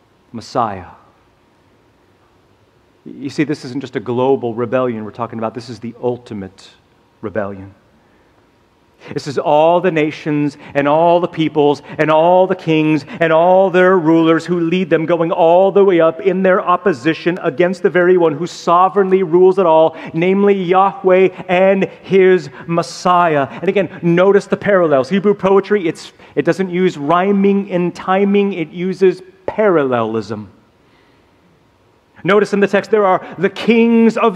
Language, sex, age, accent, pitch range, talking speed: English, male, 40-59, American, 135-190 Hz, 150 wpm